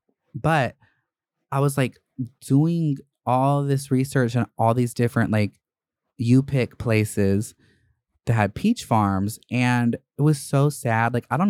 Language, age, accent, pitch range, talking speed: English, 20-39, American, 115-140 Hz, 140 wpm